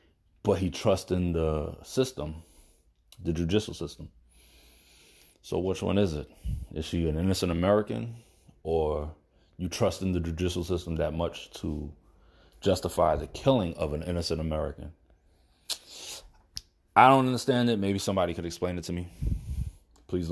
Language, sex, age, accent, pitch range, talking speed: English, male, 30-49, American, 75-95 Hz, 140 wpm